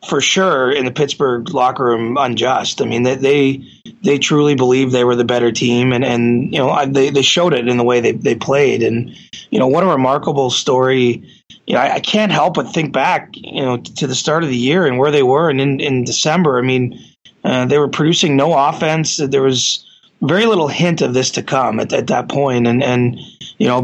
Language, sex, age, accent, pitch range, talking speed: English, male, 20-39, American, 125-145 Hz, 230 wpm